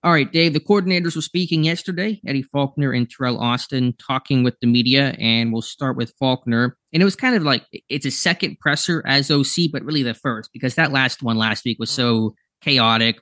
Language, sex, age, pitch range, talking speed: English, male, 20-39, 115-135 Hz, 215 wpm